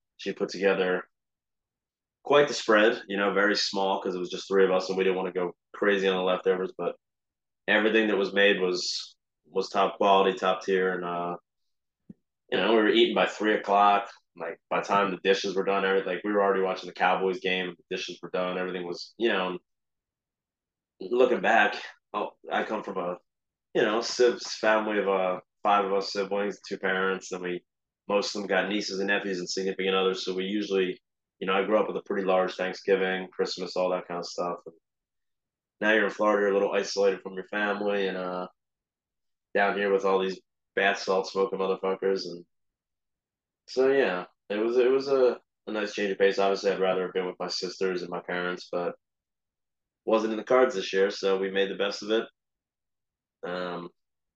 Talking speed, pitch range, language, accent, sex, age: 205 wpm, 90-100 Hz, English, American, male, 20-39